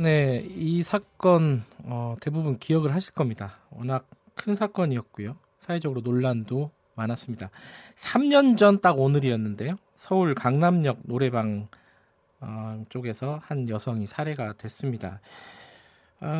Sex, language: male, Korean